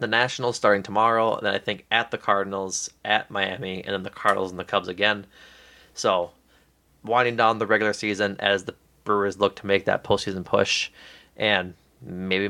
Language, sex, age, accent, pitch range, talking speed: English, male, 20-39, American, 95-125 Hz, 180 wpm